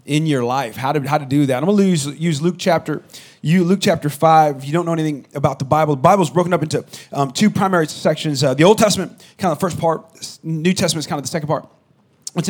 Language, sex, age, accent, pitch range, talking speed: English, male, 30-49, American, 145-175 Hz, 260 wpm